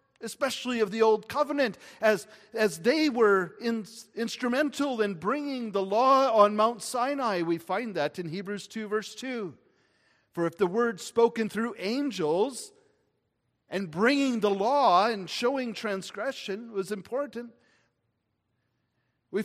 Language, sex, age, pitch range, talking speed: English, male, 50-69, 195-260 Hz, 135 wpm